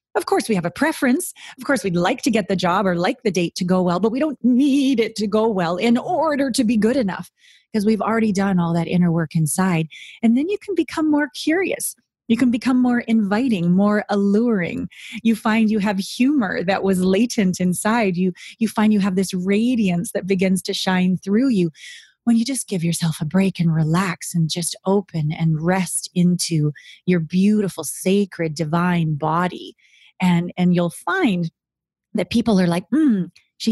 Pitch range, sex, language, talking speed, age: 175-230 Hz, female, English, 195 wpm, 30-49